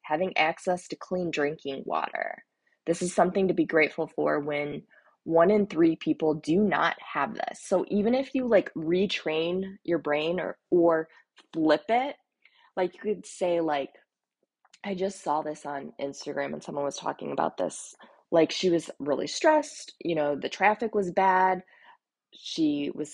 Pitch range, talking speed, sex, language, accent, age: 155-200 Hz, 165 wpm, female, English, American, 20-39